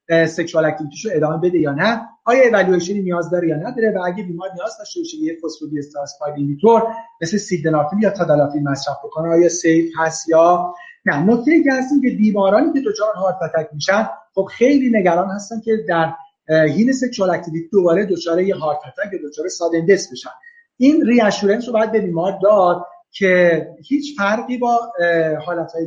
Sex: male